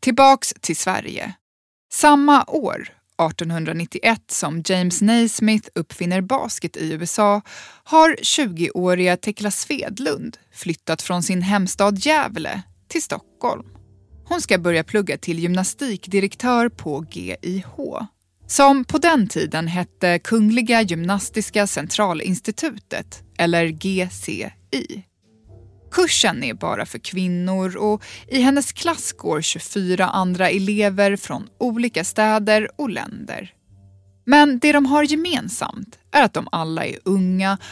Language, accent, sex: Swedish, native, female